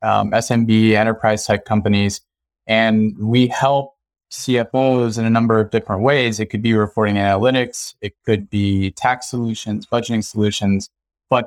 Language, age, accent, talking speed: English, 20-39, American, 140 wpm